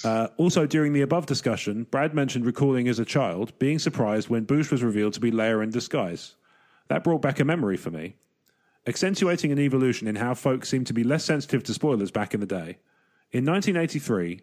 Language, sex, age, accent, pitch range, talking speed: English, male, 30-49, British, 115-150 Hz, 205 wpm